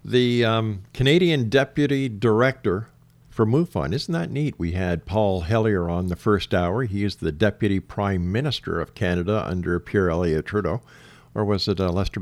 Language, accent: English, American